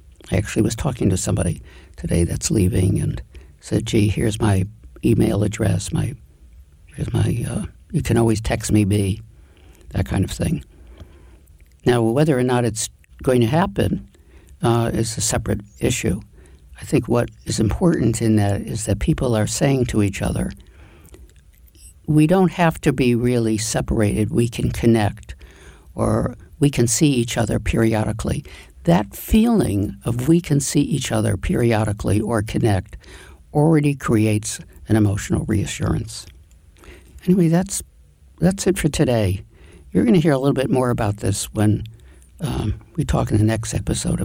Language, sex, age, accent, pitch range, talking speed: English, male, 60-79, American, 90-130 Hz, 155 wpm